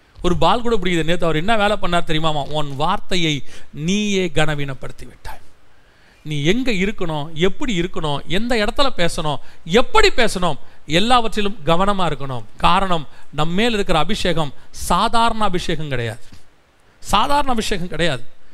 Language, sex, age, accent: Tamil, male, 40-59, native